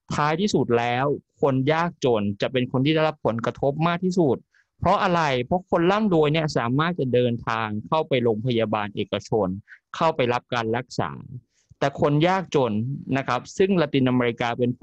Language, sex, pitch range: Thai, male, 120-165 Hz